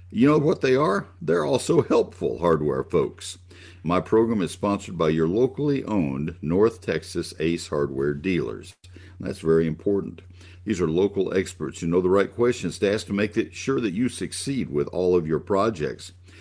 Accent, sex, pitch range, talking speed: American, male, 80-100 Hz, 180 wpm